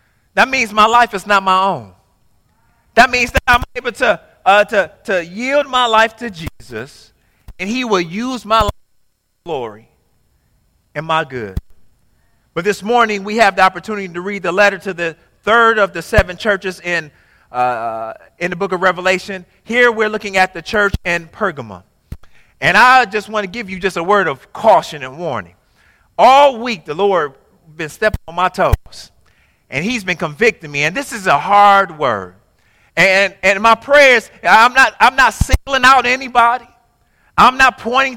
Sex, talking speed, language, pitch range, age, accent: male, 180 wpm, English, 155-230 Hz, 40-59, American